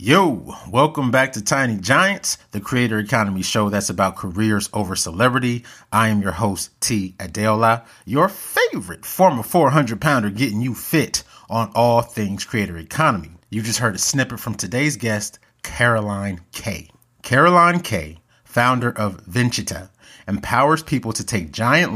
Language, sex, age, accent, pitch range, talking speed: English, male, 30-49, American, 100-130 Hz, 150 wpm